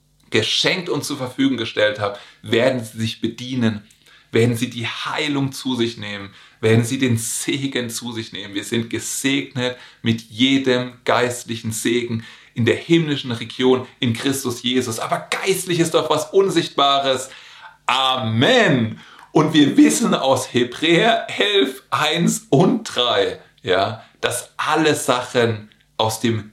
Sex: male